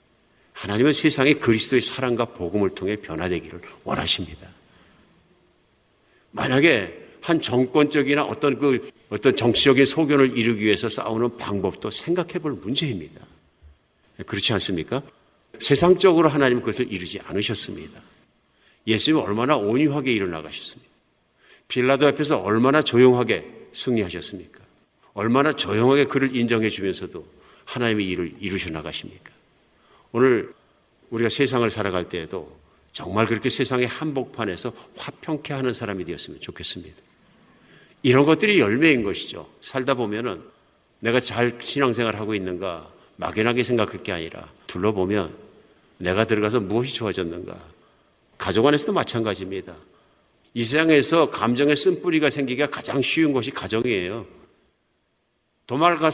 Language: Korean